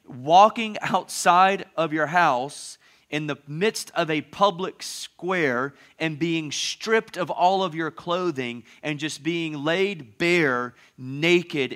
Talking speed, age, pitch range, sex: 135 wpm, 30-49, 120-170 Hz, male